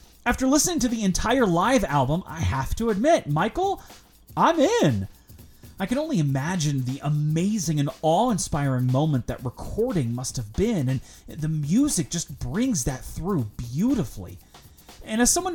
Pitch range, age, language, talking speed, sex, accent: 125-180 Hz, 30-49, English, 155 wpm, male, American